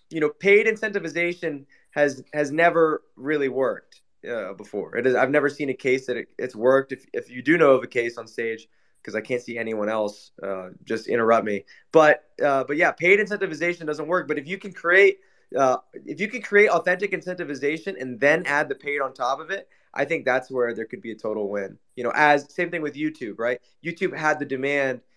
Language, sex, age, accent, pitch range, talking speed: English, male, 20-39, American, 125-175 Hz, 220 wpm